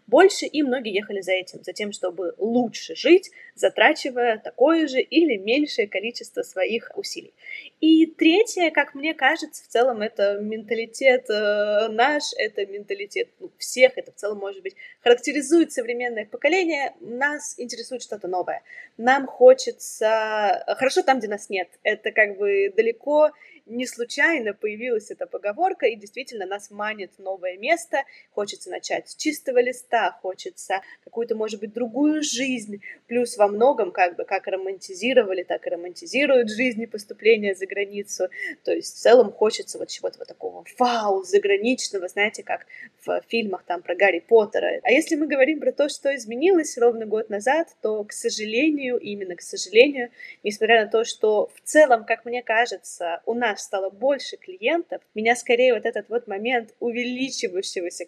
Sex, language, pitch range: female, Russian, 210-335 Hz